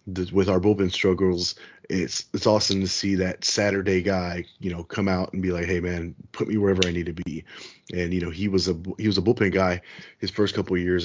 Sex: male